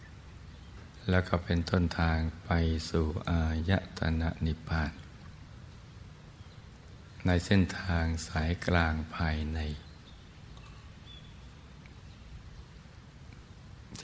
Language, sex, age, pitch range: Thai, male, 60-79, 80-90 Hz